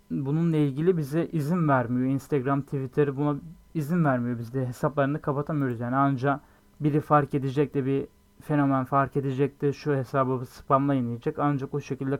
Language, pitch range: Turkish, 135-155 Hz